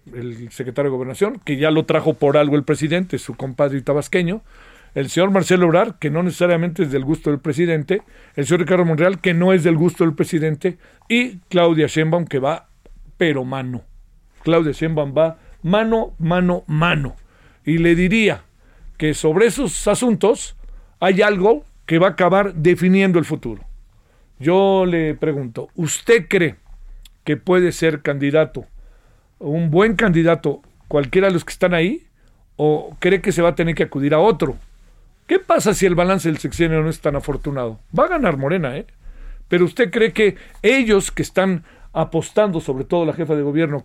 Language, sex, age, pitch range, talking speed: Spanish, male, 50-69, 150-190 Hz, 170 wpm